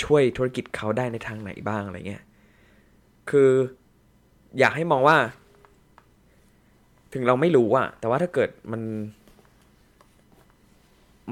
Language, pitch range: Thai, 105-125 Hz